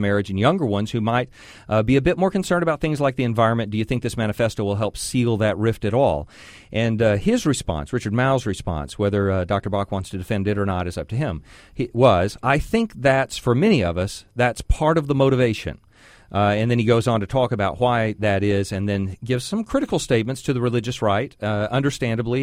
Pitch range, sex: 100-135 Hz, male